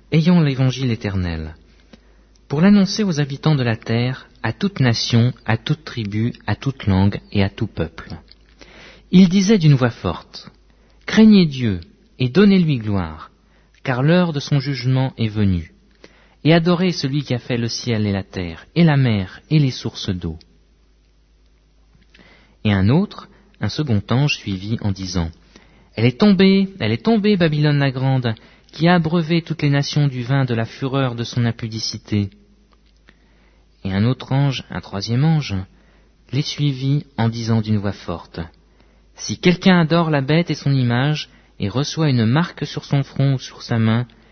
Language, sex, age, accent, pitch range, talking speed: French, male, 50-69, French, 105-155 Hz, 165 wpm